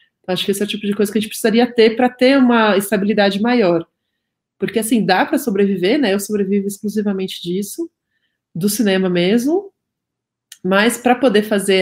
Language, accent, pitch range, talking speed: Portuguese, Brazilian, 185-245 Hz, 180 wpm